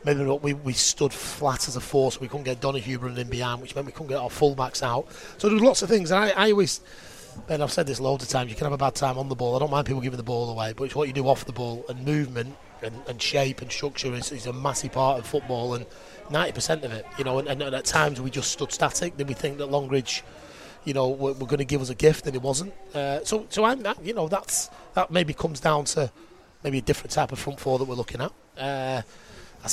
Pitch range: 130-150 Hz